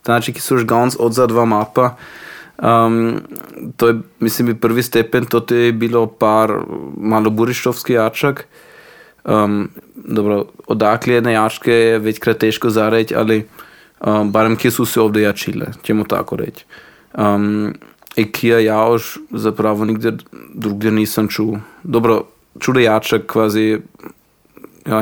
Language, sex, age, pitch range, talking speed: Croatian, male, 20-39, 110-120 Hz, 120 wpm